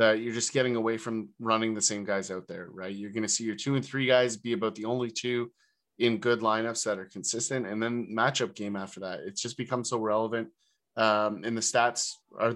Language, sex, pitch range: English, male, 110-130 Hz